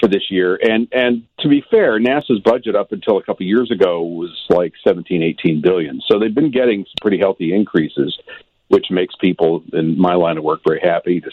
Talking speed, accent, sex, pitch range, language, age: 205 wpm, American, male, 85-105 Hz, English, 50-69